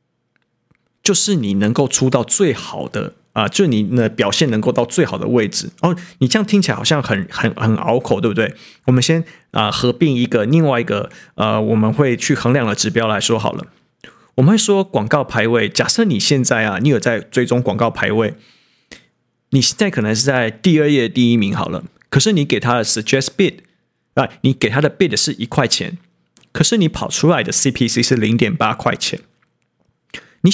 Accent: native